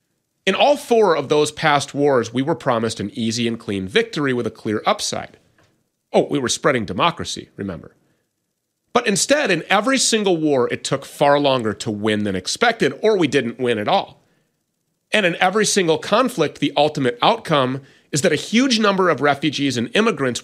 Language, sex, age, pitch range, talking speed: English, male, 30-49, 120-180 Hz, 180 wpm